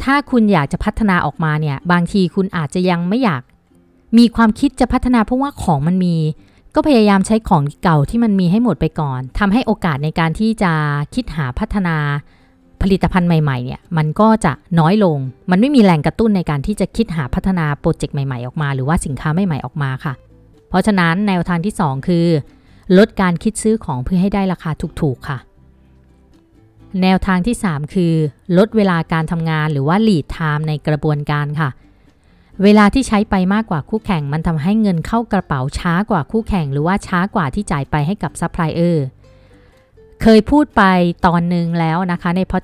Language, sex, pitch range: Thai, female, 150-200 Hz